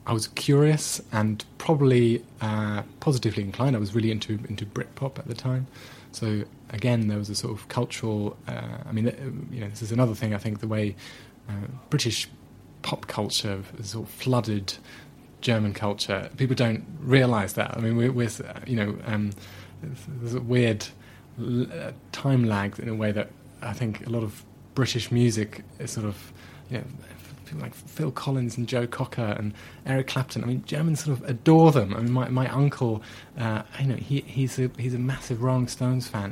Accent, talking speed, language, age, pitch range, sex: British, 185 wpm, English, 20-39, 110-135 Hz, male